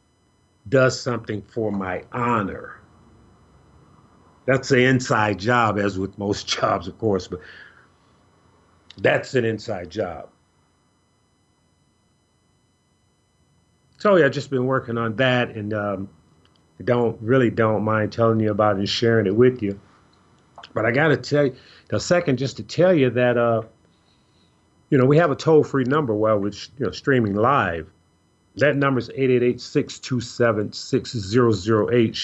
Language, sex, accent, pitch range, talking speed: English, male, American, 100-130 Hz, 140 wpm